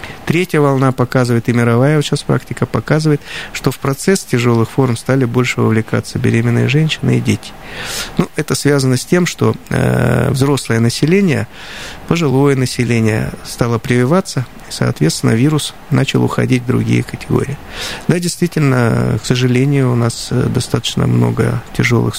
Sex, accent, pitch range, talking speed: male, native, 115-140 Hz, 135 wpm